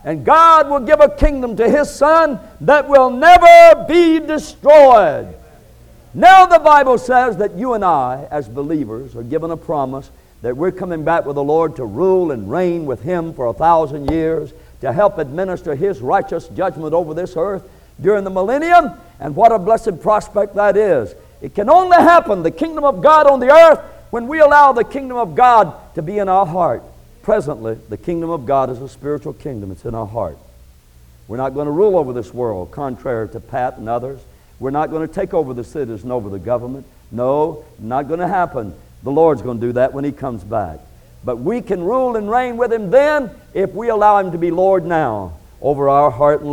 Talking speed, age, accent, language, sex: 205 wpm, 60-79, American, English, male